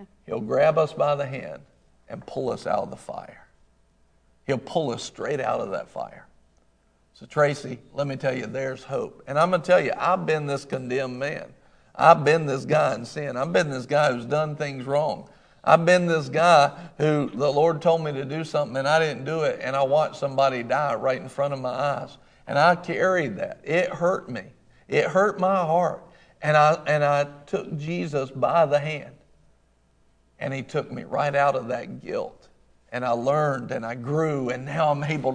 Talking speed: 205 wpm